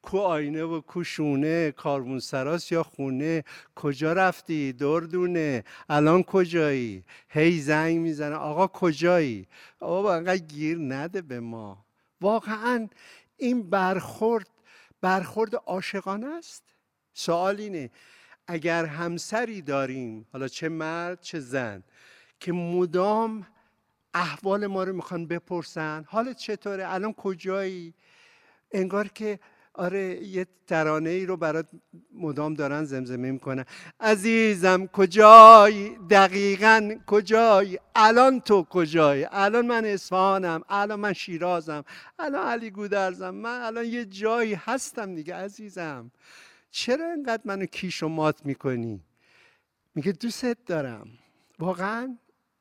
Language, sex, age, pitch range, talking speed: Persian, male, 60-79, 155-215 Hz, 110 wpm